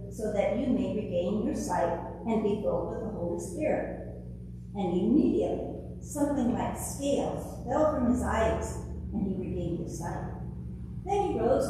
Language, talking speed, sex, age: English, 160 wpm, female, 50-69